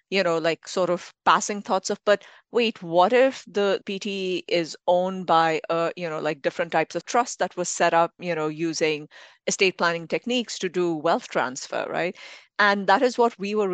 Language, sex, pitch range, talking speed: English, female, 160-200 Hz, 195 wpm